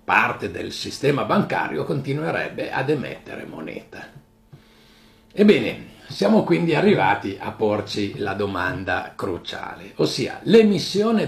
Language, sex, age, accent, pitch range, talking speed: Italian, male, 60-79, native, 110-150 Hz, 100 wpm